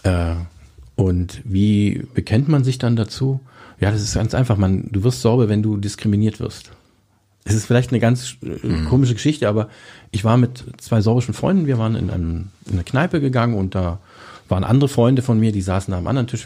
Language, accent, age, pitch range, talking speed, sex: German, German, 50-69, 100-130 Hz, 205 wpm, male